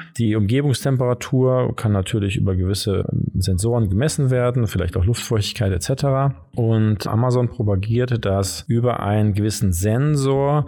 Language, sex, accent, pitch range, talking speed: German, male, German, 100-125 Hz, 120 wpm